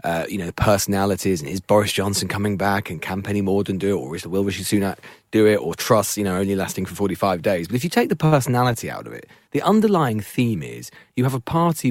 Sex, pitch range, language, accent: male, 100-135 Hz, English, British